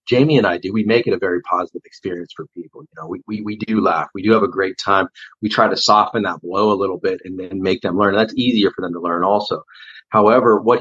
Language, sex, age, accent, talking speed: English, male, 40-59, American, 280 wpm